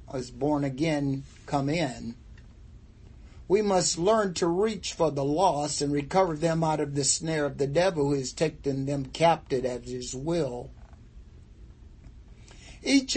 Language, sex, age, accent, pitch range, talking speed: English, male, 50-69, American, 130-165 Hz, 145 wpm